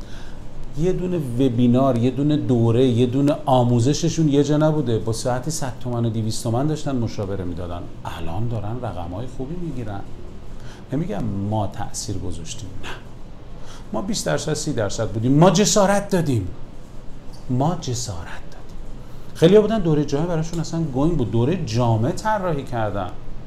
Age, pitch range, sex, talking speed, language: 40-59, 115-160 Hz, male, 145 wpm, Persian